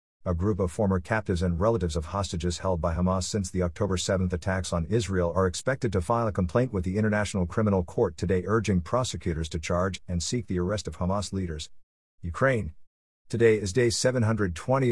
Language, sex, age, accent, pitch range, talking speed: English, male, 50-69, American, 90-120 Hz, 190 wpm